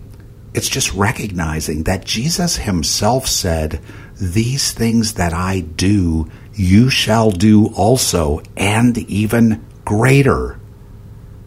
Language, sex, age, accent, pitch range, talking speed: English, male, 60-79, American, 95-115 Hz, 100 wpm